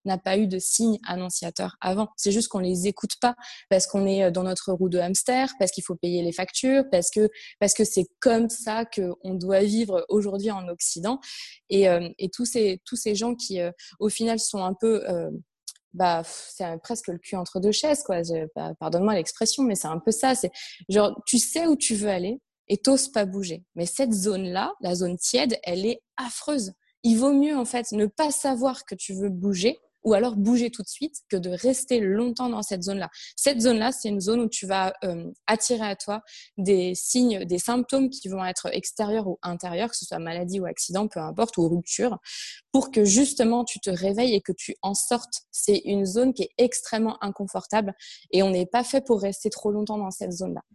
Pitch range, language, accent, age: 190-240 Hz, French, French, 20-39